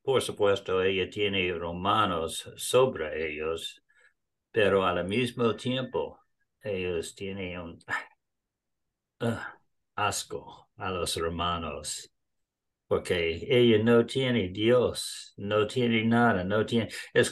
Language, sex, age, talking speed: English, male, 60-79, 105 wpm